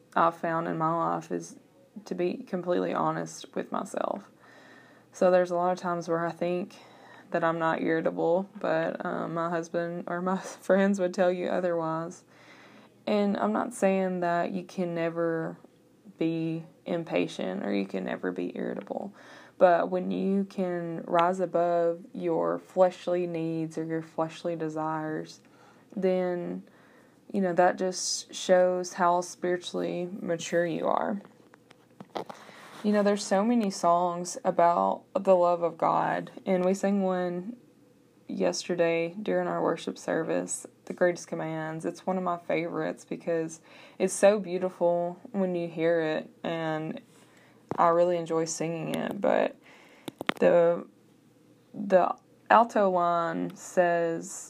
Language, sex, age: English, female, 20-39